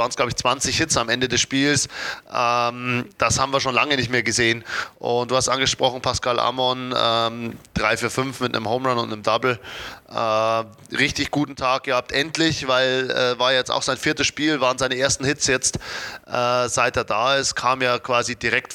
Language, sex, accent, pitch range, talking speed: German, male, German, 115-130 Hz, 200 wpm